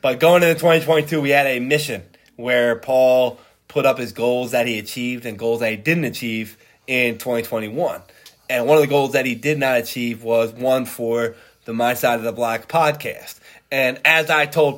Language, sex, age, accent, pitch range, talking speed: English, male, 20-39, American, 120-155 Hz, 200 wpm